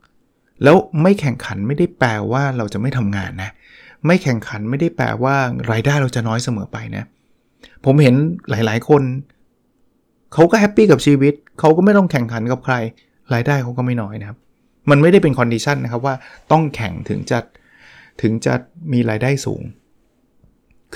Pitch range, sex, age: 110-140 Hz, male, 20-39